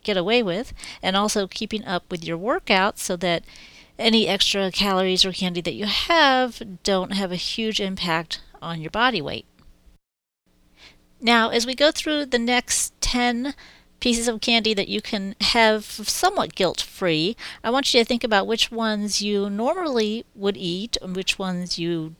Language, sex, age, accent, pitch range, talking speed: English, female, 40-59, American, 170-220 Hz, 170 wpm